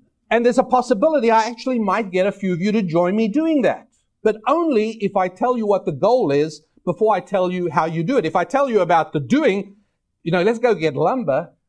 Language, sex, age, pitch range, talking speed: English, male, 50-69, 145-230 Hz, 245 wpm